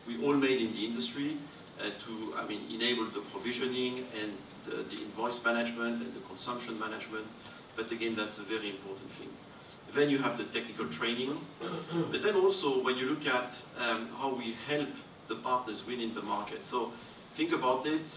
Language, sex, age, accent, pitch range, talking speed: English, male, 50-69, French, 110-135 Hz, 185 wpm